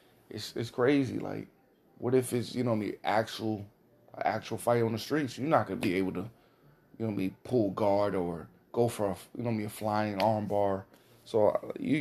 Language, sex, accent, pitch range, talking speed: English, male, American, 100-120 Hz, 225 wpm